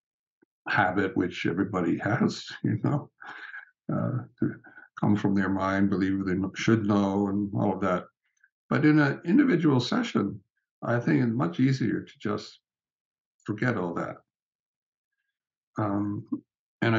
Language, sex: English, male